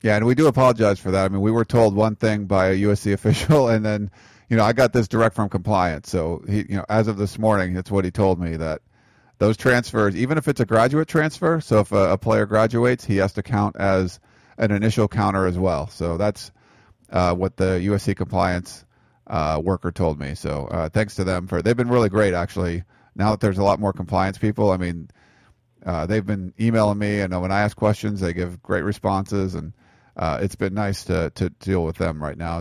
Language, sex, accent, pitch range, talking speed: English, male, American, 95-115 Hz, 230 wpm